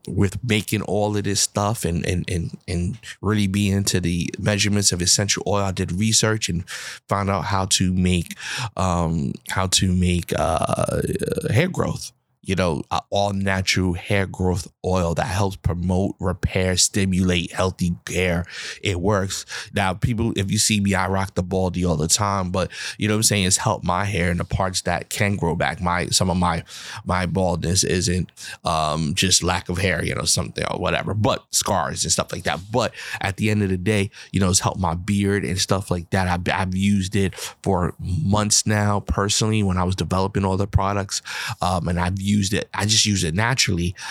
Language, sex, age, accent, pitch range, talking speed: English, male, 30-49, American, 90-100 Hz, 200 wpm